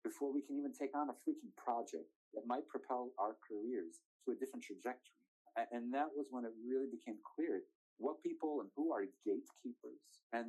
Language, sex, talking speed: English, male, 190 wpm